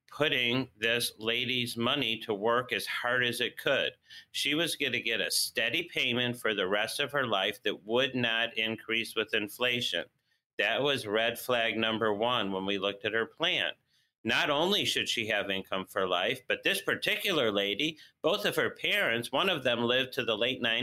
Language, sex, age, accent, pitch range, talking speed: English, male, 40-59, American, 110-130 Hz, 190 wpm